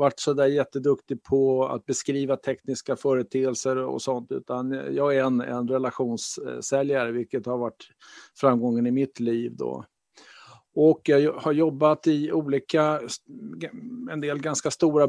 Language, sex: Swedish, male